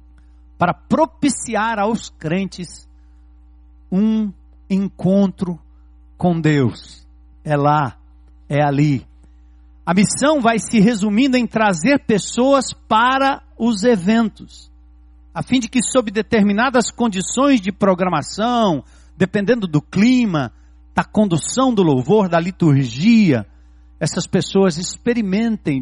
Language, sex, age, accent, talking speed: Portuguese, male, 60-79, Brazilian, 100 wpm